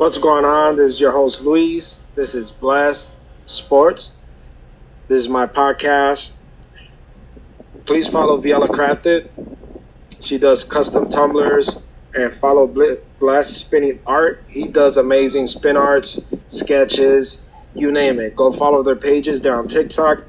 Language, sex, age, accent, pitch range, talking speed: English, male, 20-39, American, 125-145 Hz, 135 wpm